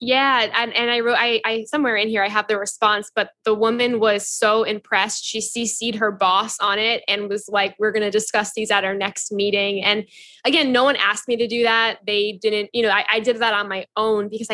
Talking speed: 245 wpm